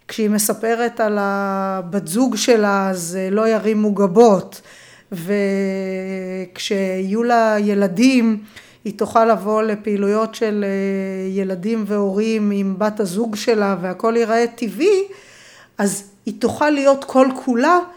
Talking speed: 105 wpm